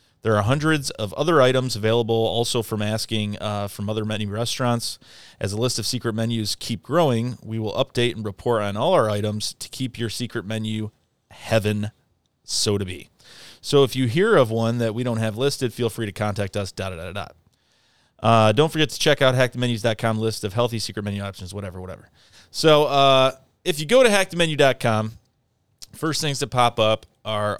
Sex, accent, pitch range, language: male, American, 105-130 Hz, English